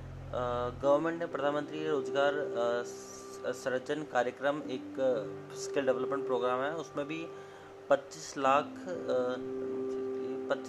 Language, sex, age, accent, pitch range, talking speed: Hindi, male, 20-39, native, 130-140 Hz, 95 wpm